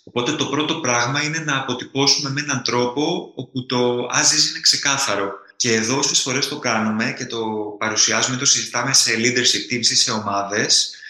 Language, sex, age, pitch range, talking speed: Greek, male, 20-39, 110-140 Hz, 175 wpm